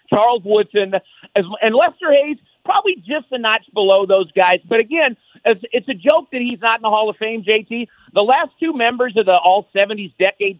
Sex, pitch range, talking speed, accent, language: male, 185-235 Hz, 190 wpm, American, English